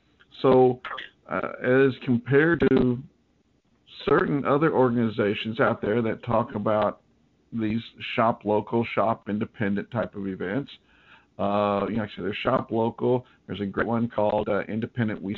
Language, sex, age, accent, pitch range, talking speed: English, male, 50-69, American, 110-135 Hz, 140 wpm